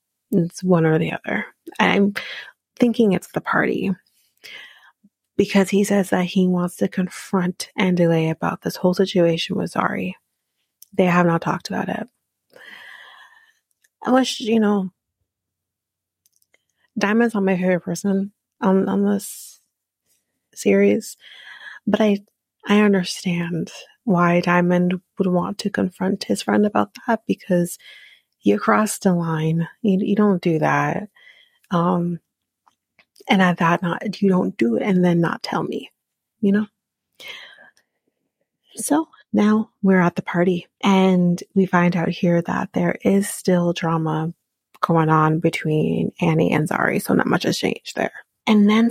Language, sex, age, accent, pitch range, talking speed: English, female, 30-49, American, 170-205 Hz, 140 wpm